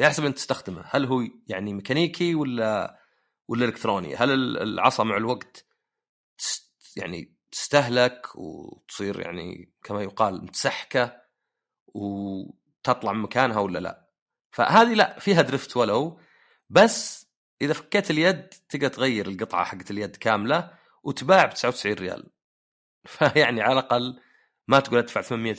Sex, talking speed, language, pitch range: male, 125 wpm, Arabic, 95-130 Hz